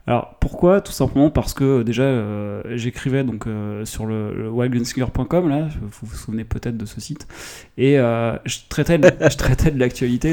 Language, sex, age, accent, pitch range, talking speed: French, male, 20-39, French, 115-145 Hz, 190 wpm